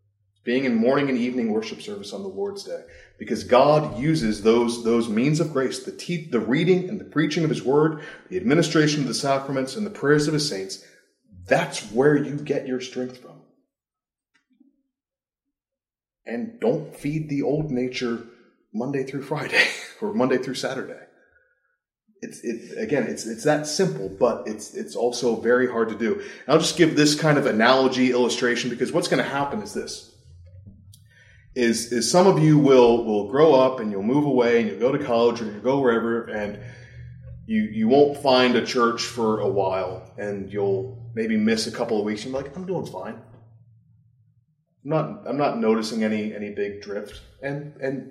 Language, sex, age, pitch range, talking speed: English, male, 30-49, 115-160 Hz, 180 wpm